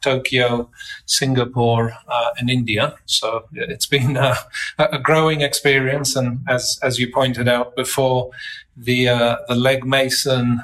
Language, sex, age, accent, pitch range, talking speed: English, male, 40-59, British, 125-145 Hz, 135 wpm